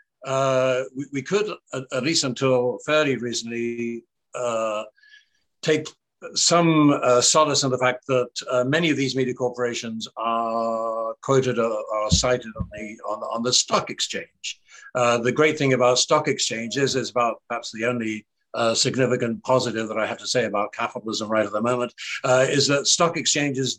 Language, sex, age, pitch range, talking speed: English, male, 60-79, 115-135 Hz, 165 wpm